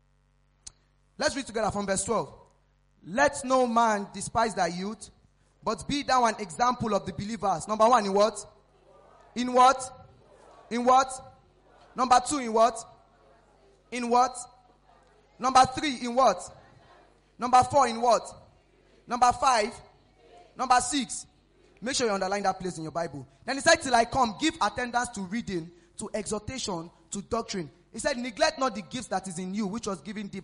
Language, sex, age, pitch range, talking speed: English, male, 20-39, 180-245 Hz, 165 wpm